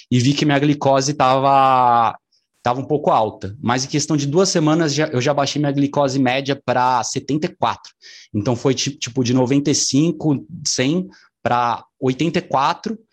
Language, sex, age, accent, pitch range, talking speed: Portuguese, male, 20-39, Brazilian, 110-145 Hz, 150 wpm